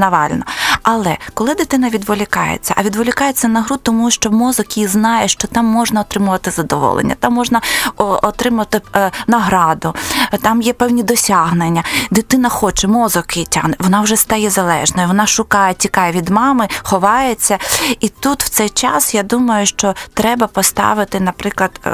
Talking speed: 150 wpm